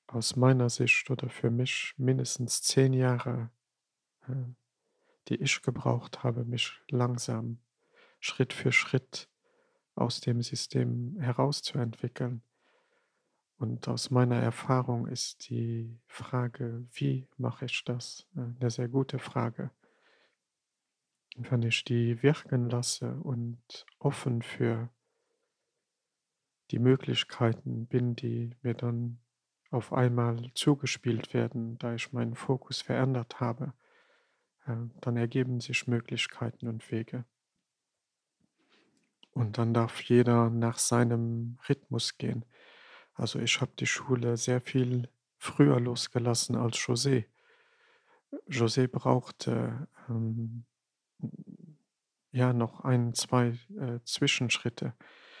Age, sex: 40-59, male